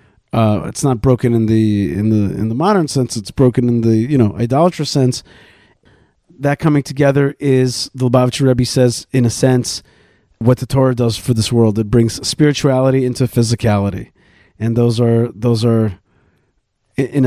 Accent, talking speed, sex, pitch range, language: American, 170 wpm, male, 115-135 Hz, English